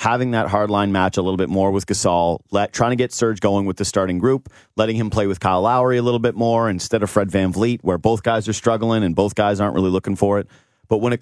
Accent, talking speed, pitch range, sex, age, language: American, 275 wpm, 95-120 Hz, male, 30-49, English